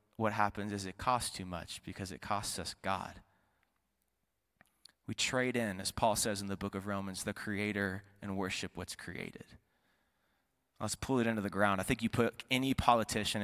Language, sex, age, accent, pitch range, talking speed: English, male, 20-39, American, 95-110 Hz, 185 wpm